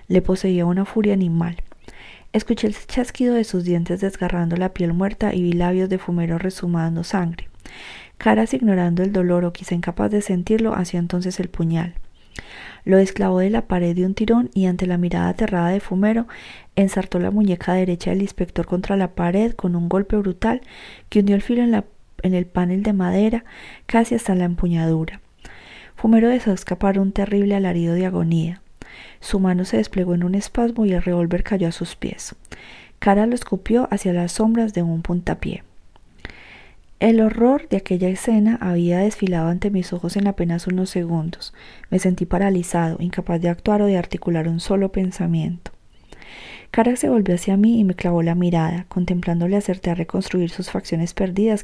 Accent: Colombian